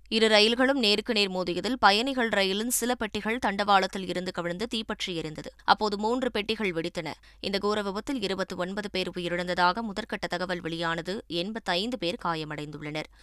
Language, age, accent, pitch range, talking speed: Tamil, 20-39, native, 170-210 Hz, 135 wpm